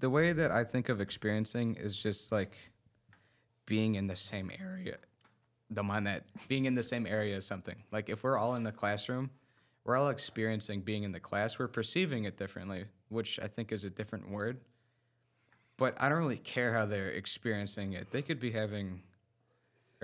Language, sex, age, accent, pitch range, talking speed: English, male, 20-39, American, 105-130 Hz, 190 wpm